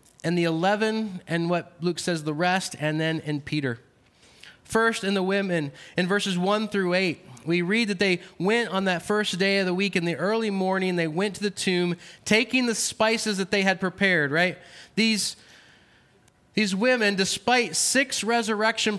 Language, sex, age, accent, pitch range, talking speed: English, male, 20-39, American, 175-210 Hz, 180 wpm